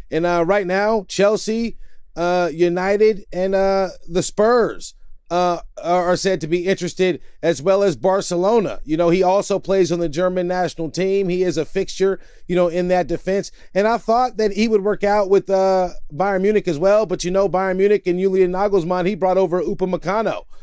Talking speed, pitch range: 195 wpm, 170-195 Hz